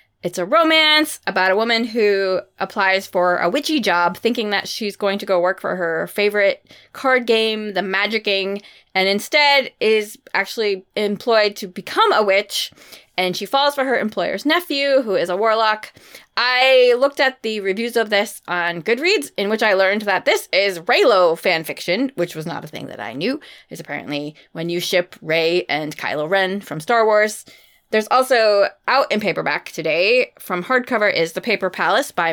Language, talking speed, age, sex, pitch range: English, 180 wpm, 20-39, female, 180-230 Hz